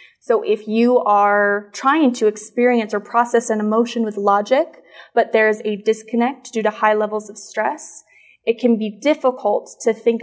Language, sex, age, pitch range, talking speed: English, female, 20-39, 215-245 Hz, 175 wpm